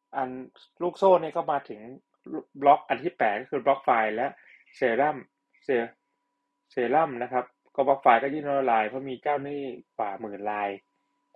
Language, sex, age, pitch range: Thai, male, 20-39, 125-150 Hz